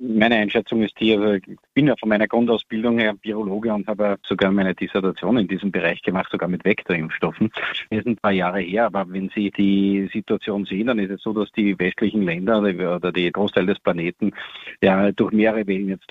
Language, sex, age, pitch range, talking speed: German, male, 50-69, 100-115 Hz, 205 wpm